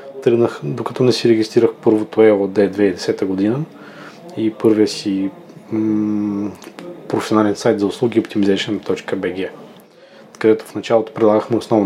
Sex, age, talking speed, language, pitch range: male, 20-39, 110 wpm, Bulgarian, 110-145 Hz